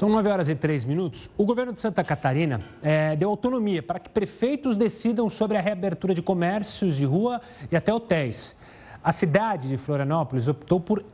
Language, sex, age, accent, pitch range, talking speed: Portuguese, male, 30-49, Brazilian, 150-195 Hz, 185 wpm